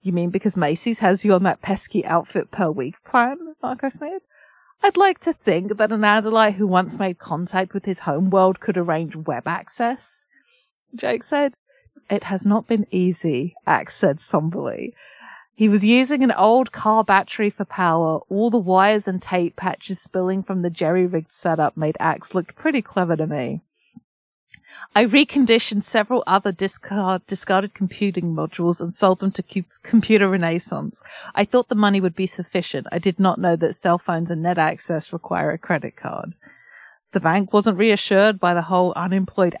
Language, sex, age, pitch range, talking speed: English, female, 40-59, 175-220 Hz, 175 wpm